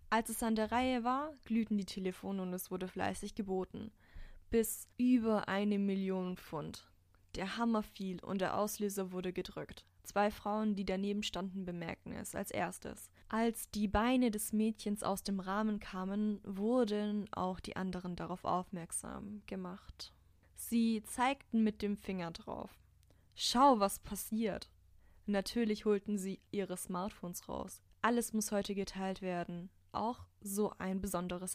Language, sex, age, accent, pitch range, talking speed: German, female, 10-29, German, 180-210 Hz, 145 wpm